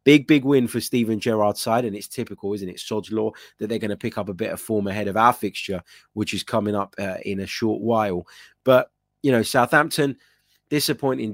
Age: 20-39